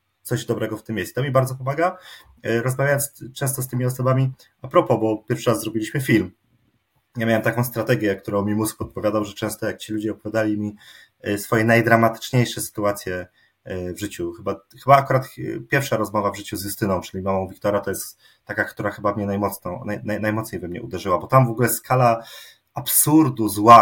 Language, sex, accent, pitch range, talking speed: Polish, male, native, 105-125 Hz, 185 wpm